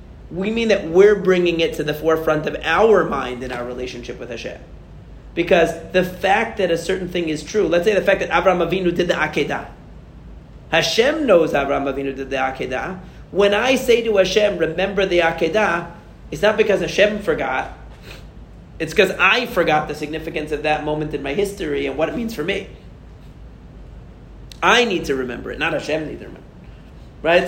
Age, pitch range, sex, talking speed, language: 40-59, 150-195 Hz, male, 185 wpm, English